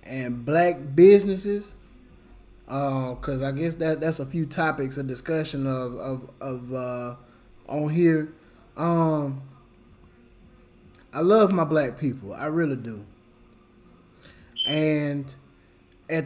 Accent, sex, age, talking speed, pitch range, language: American, male, 20-39, 115 wpm, 125-160 Hz, English